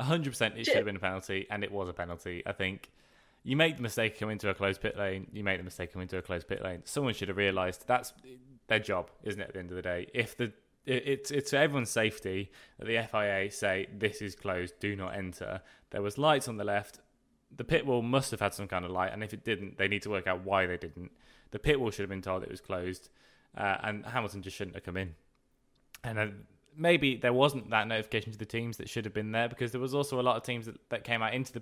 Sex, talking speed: male, 270 wpm